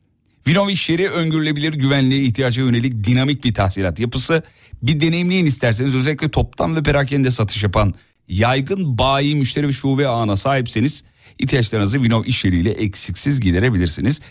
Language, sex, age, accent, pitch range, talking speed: Turkish, male, 40-59, native, 95-140 Hz, 135 wpm